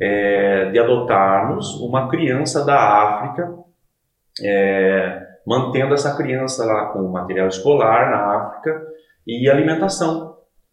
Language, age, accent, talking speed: Portuguese, 30-49, Brazilian, 105 wpm